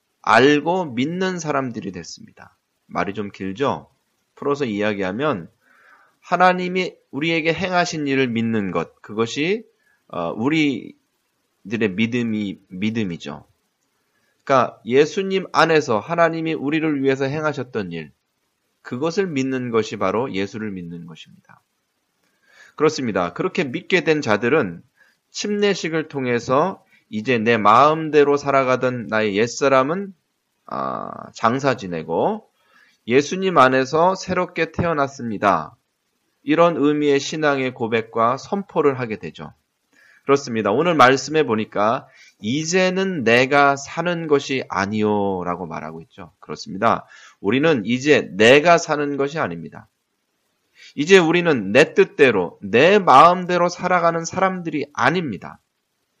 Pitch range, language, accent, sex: 115-170 Hz, Korean, native, male